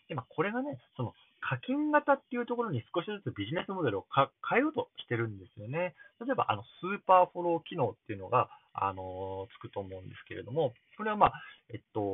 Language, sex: Japanese, male